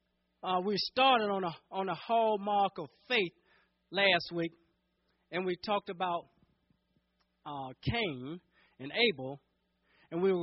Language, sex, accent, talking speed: English, male, American, 130 wpm